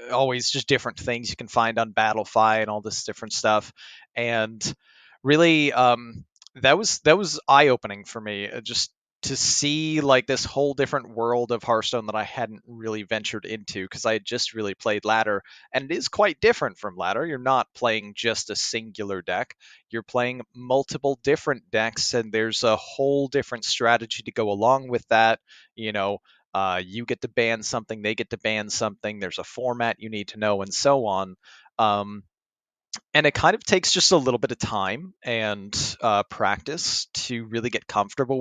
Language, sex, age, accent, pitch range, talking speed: English, male, 30-49, American, 110-135 Hz, 185 wpm